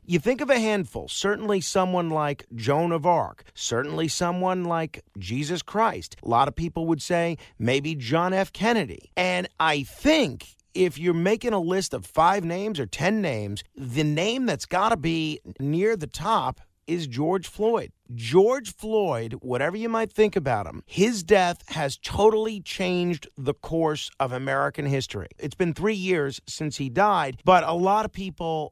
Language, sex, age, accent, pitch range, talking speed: English, male, 50-69, American, 150-205 Hz, 170 wpm